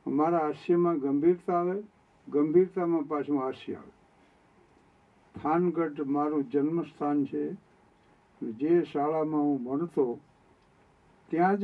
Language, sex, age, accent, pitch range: Gujarati, male, 60-79, native, 145-175 Hz